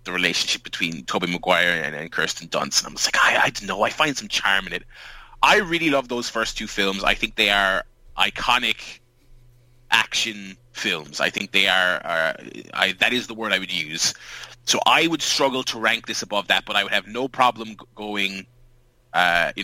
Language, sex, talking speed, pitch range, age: English, male, 210 wpm, 95-125 Hz, 20-39